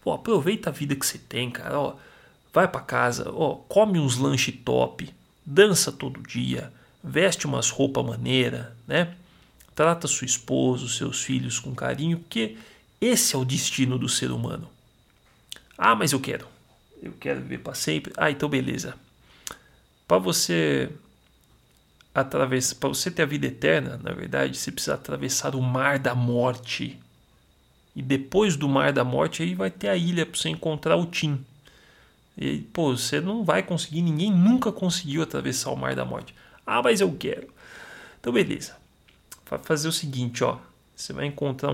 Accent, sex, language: Brazilian, male, Portuguese